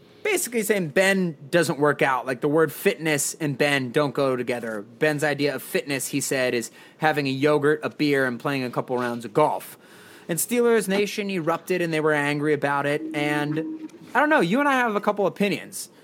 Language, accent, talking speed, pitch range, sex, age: English, American, 205 wpm, 135-195 Hz, male, 30-49